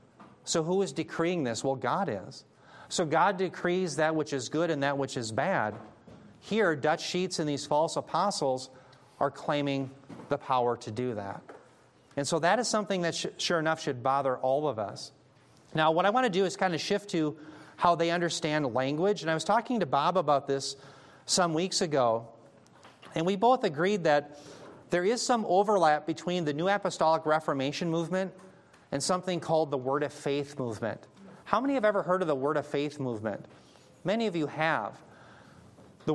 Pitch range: 140-180 Hz